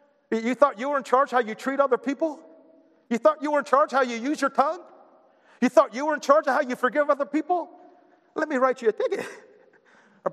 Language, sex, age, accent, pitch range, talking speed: English, male, 50-69, American, 200-310 Hz, 250 wpm